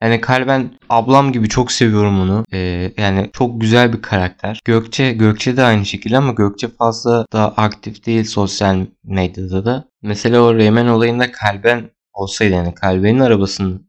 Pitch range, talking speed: 100-130 Hz, 155 wpm